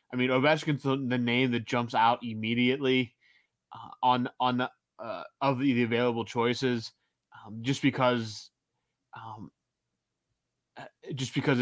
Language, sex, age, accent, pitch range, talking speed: English, male, 20-39, American, 115-135 Hz, 120 wpm